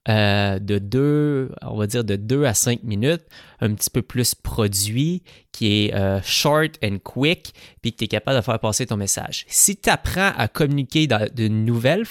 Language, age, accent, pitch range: English, 20-39, Canadian, 105-135 Hz